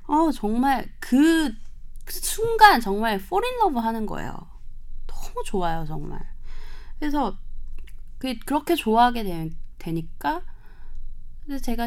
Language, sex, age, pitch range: Korean, female, 20-39, 180-280 Hz